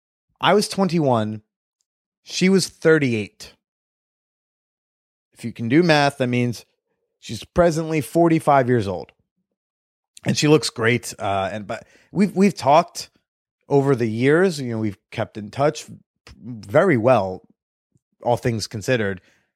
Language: English